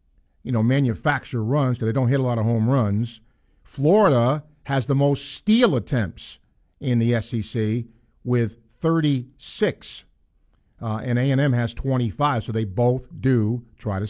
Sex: male